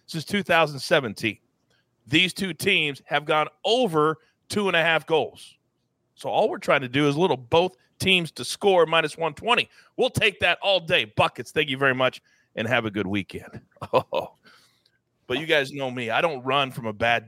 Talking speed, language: 190 wpm, English